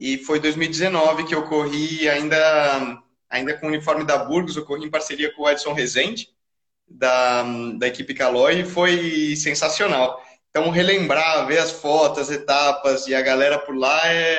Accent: Brazilian